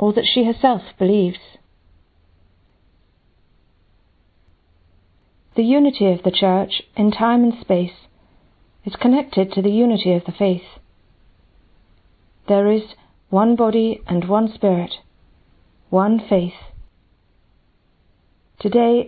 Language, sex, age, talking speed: English, female, 40-59, 100 wpm